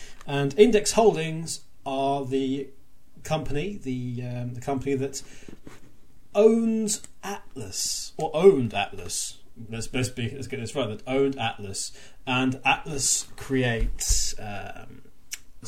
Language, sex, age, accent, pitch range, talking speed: English, male, 30-49, British, 125-150 Hz, 105 wpm